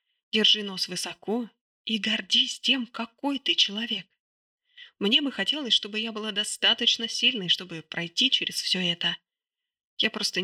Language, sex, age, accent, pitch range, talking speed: Russian, female, 20-39, native, 180-235 Hz, 140 wpm